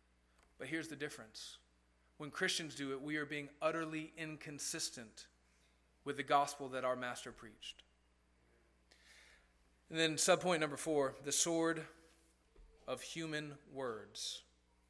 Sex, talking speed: male, 120 wpm